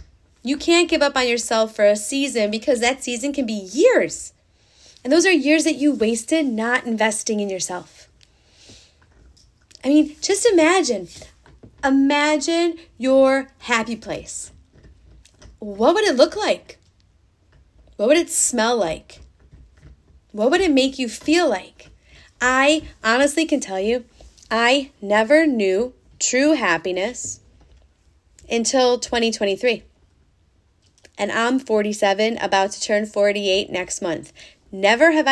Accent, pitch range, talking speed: American, 205-295 Hz, 125 wpm